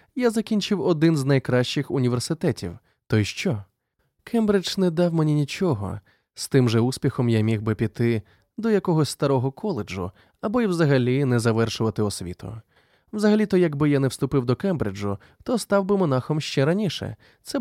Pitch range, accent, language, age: 115-175 Hz, native, Ukrainian, 20-39